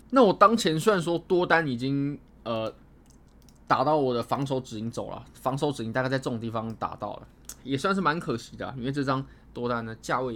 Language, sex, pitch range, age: Chinese, male, 115-165 Hz, 20-39